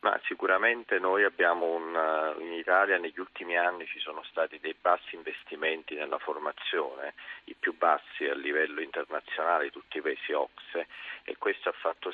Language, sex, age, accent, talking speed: Italian, male, 40-59, native, 160 wpm